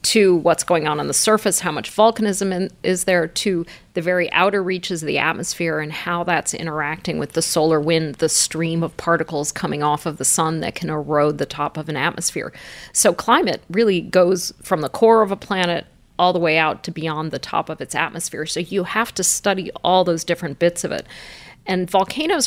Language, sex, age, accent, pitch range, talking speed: English, female, 40-59, American, 165-195 Hz, 210 wpm